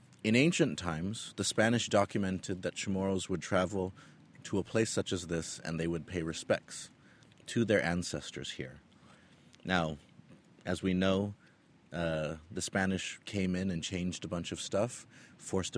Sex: male